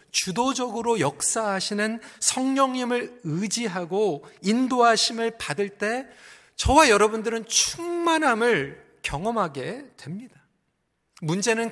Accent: native